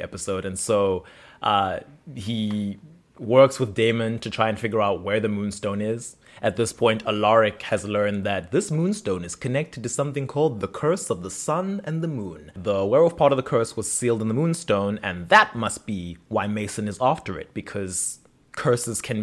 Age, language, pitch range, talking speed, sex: 20-39, English, 105-140 Hz, 195 wpm, male